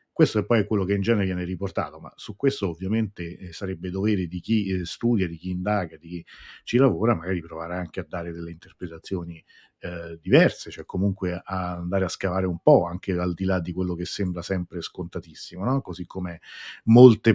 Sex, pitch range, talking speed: male, 90-110 Hz, 185 wpm